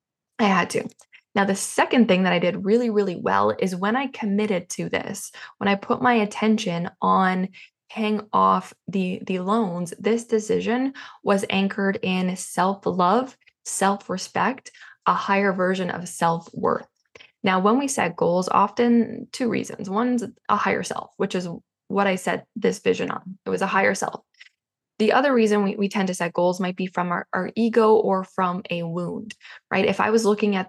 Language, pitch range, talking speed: English, 185-220 Hz, 180 wpm